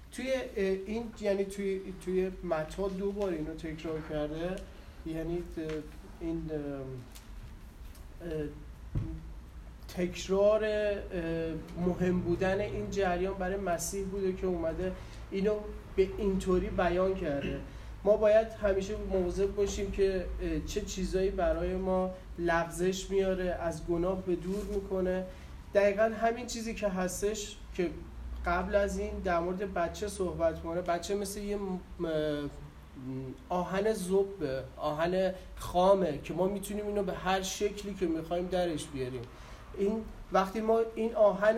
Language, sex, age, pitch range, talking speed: Persian, male, 30-49, 175-205 Hz, 120 wpm